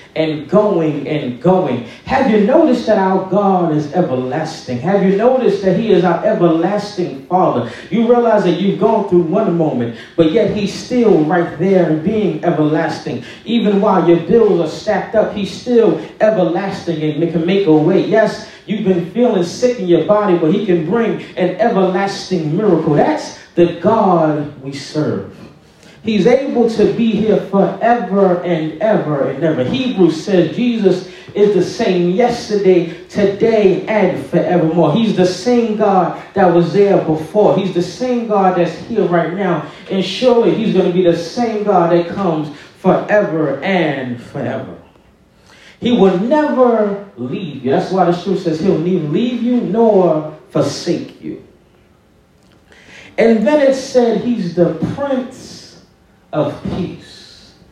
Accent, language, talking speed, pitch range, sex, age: American, English, 155 wpm, 170-215 Hz, male, 30-49